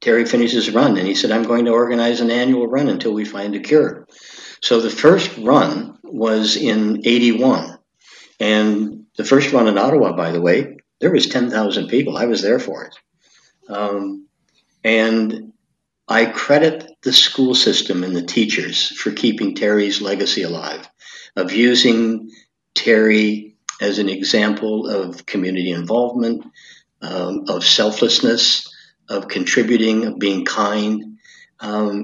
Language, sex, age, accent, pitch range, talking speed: English, male, 60-79, American, 105-125 Hz, 145 wpm